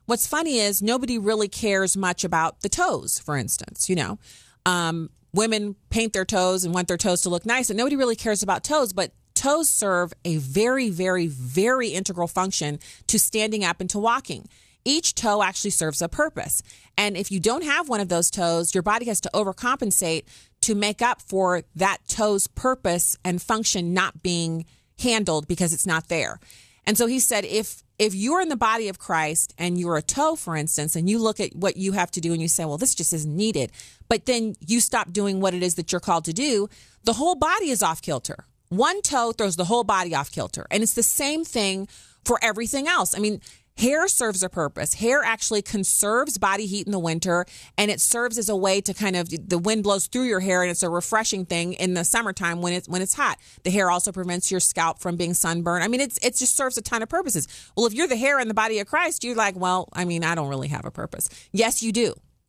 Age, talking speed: 30-49, 230 wpm